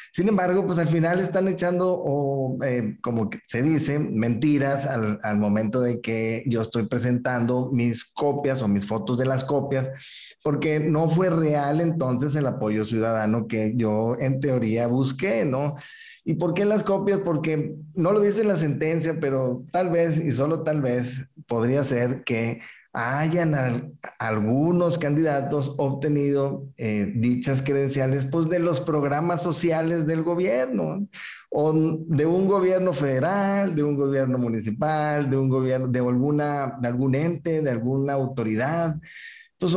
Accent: Mexican